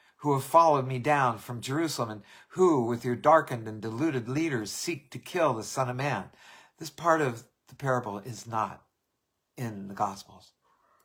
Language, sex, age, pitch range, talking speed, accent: English, male, 60-79, 120-160 Hz, 175 wpm, American